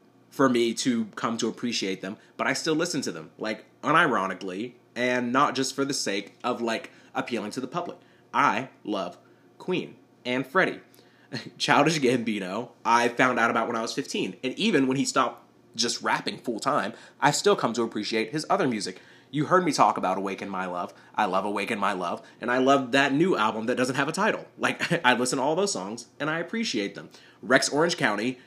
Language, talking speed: English, 200 wpm